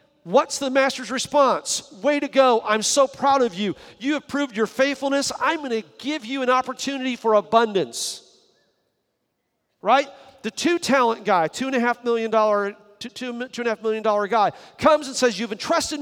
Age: 40-59